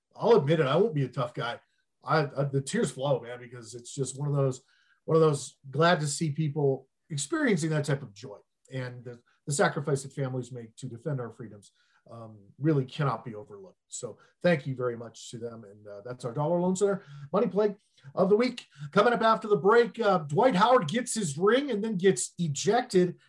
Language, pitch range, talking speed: English, 130-165 Hz, 215 wpm